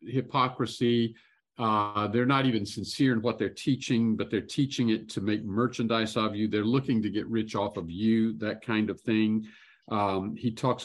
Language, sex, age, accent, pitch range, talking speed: English, male, 50-69, American, 110-130 Hz, 190 wpm